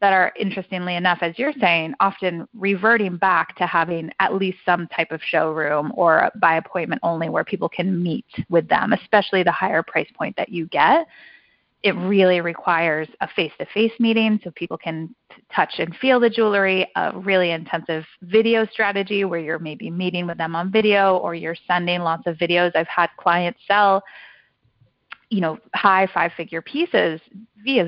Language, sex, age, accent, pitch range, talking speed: English, female, 30-49, American, 170-210 Hz, 170 wpm